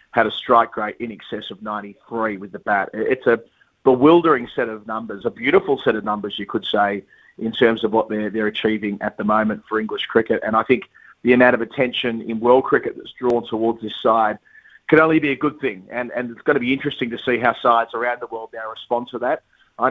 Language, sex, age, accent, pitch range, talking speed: English, male, 30-49, Australian, 110-125 Hz, 235 wpm